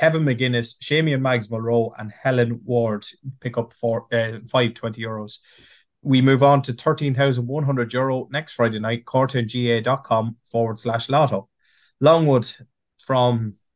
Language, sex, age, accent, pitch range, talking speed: English, male, 20-39, Irish, 115-140 Hz, 130 wpm